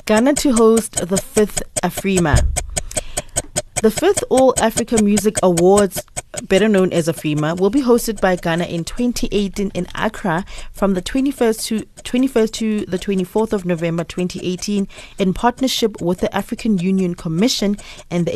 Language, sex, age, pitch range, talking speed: English, female, 30-49, 175-220 Hz, 145 wpm